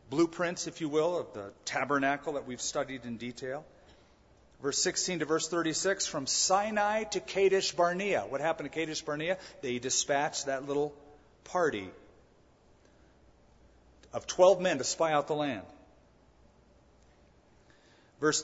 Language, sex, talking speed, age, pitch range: English, male, 135 wpm, 40-59, 135-175 Hz